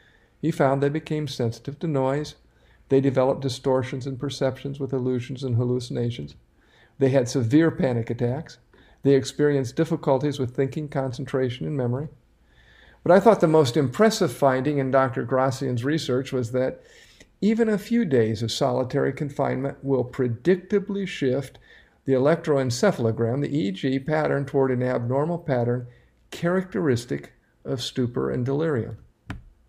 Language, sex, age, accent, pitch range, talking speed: English, male, 50-69, American, 120-140 Hz, 135 wpm